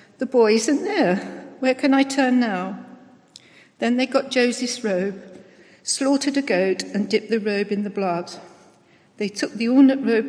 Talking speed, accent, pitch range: 170 wpm, British, 195-255 Hz